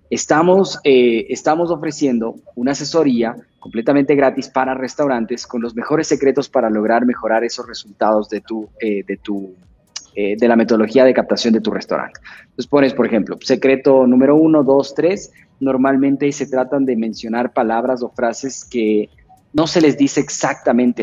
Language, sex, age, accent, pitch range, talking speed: Spanish, male, 30-49, Mexican, 120-150 Hz, 160 wpm